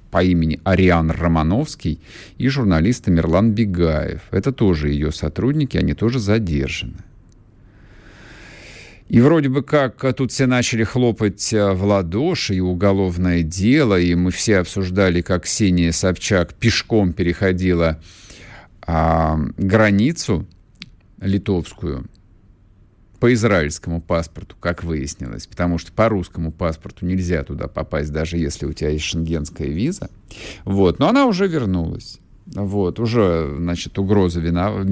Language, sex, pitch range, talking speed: Russian, male, 85-110 Hz, 120 wpm